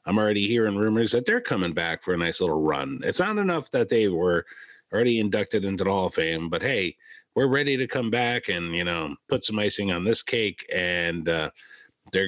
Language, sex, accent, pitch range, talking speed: English, male, American, 100-130 Hz, 220 wpm